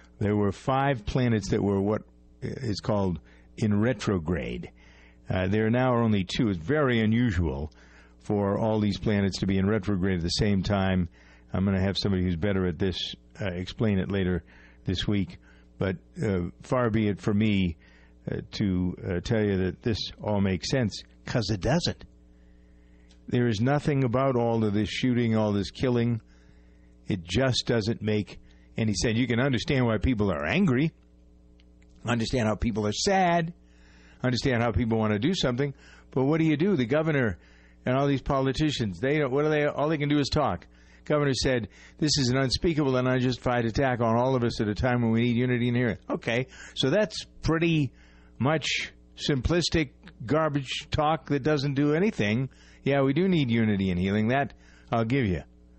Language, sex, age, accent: English, male, 50-69, American